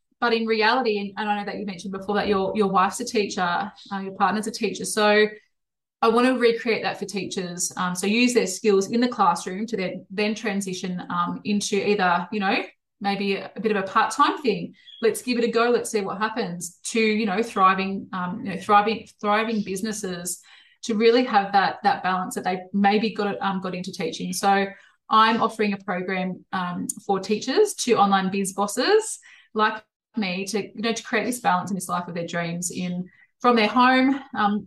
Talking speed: 205 wpm